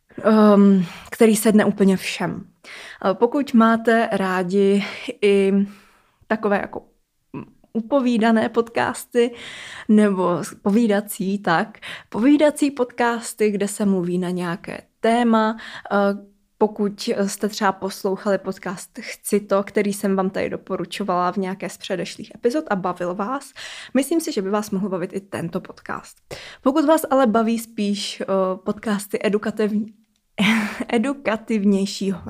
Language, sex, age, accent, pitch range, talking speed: Czech, female, 20-39, native, 190-220 Hz, 115 wpm